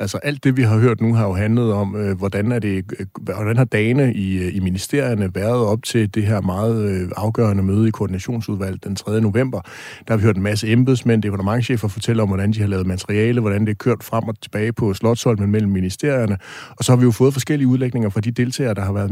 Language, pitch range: Danish, 105-125 Hz